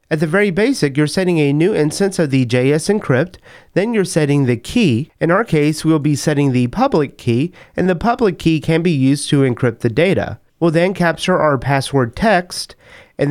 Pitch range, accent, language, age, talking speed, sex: 130-170 Hz, American, English, 30-49, 205 wpm, male